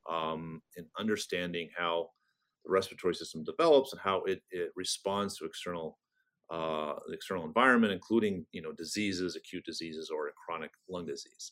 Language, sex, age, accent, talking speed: English, male, 30-49, American, 150 wpm